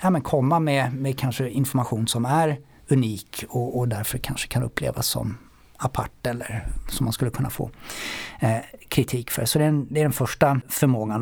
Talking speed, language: 195 wpm, English